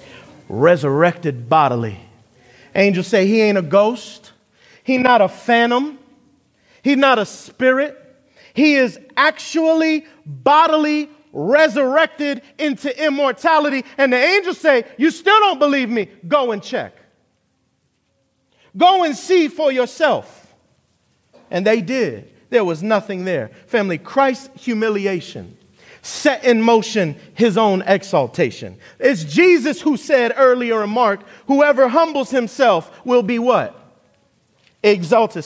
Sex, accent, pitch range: male, American, 215-300 Hz